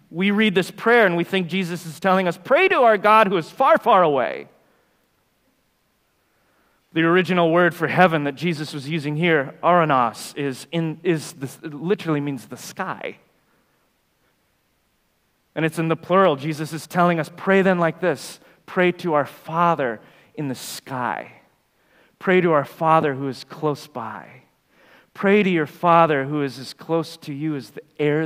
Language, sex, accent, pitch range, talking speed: English, male, American, 150-185 Hz, 165 wpm